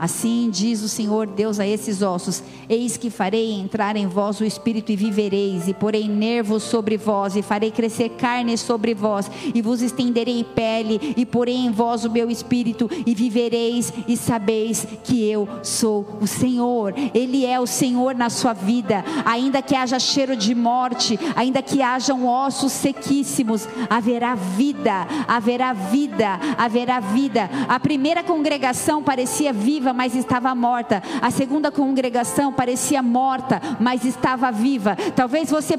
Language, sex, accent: Portuguese, female, Brazilian